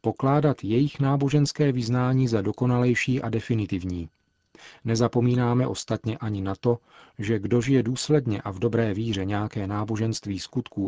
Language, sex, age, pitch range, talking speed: Czech, male, 40-59, 105-125 Hz, 130 wpm